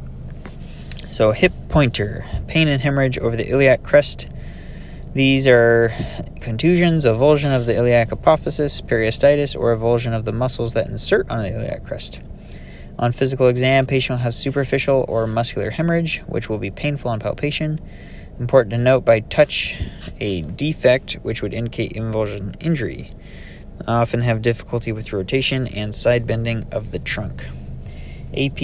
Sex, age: male, 20-39